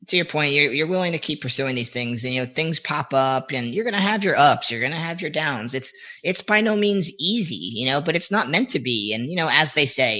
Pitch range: 130-165 Hz